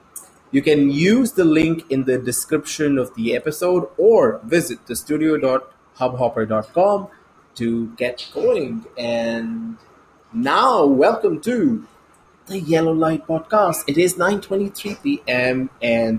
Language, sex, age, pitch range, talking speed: English, male, 20-39, 115-150 Hz, 110 wpm